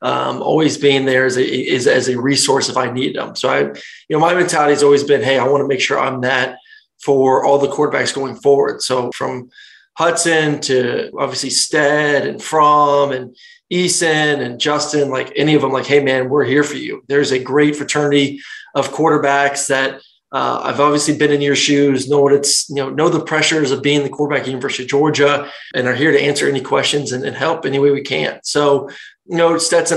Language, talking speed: English, 220 wpm